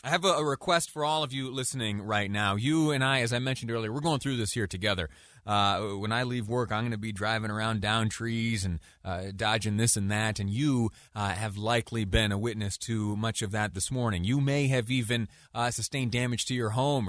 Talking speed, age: 235 wpm, 30-49